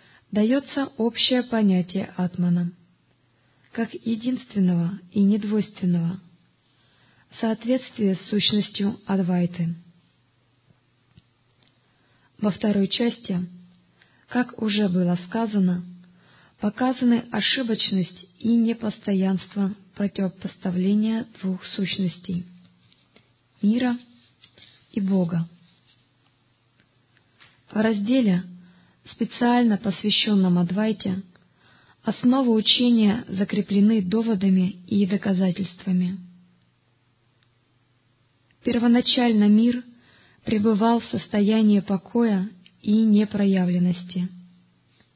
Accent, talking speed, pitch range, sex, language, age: native, 65 wpm, 175-220 Hz, female, Russian, 20-39